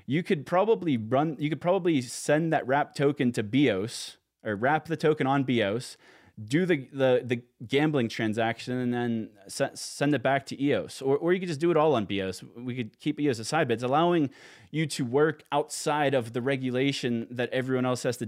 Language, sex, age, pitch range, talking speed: English, male, 20-39, 115-150 Hz, 205 wpm